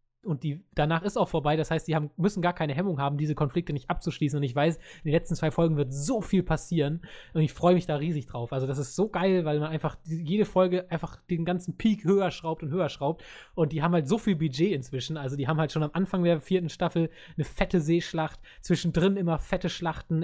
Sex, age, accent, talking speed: male, 20-39, German, 235 wpm